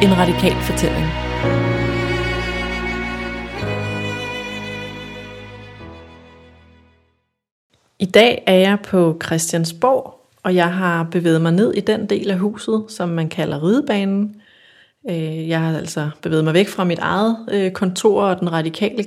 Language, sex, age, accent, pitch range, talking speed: Danish, female, 30-49, native, 170-210 Hz, 115 wpm